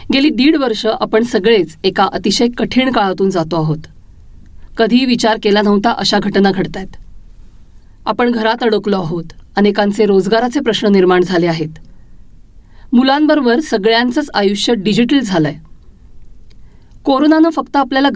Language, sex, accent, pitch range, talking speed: Marathi, female, native, 180-250 Hz, 120 wpm